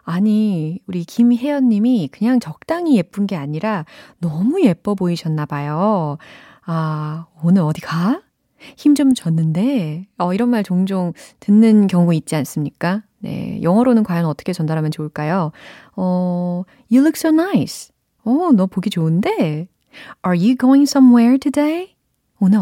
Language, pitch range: Korean, 160-240 Hz